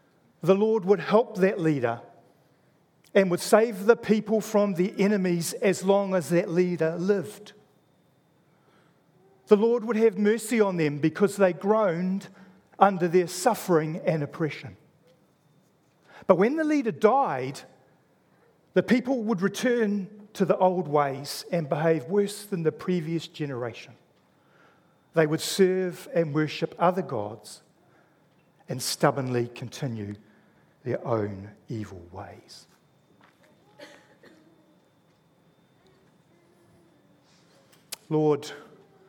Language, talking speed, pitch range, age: English, 105 wpm, 155-195 Hz, 40-59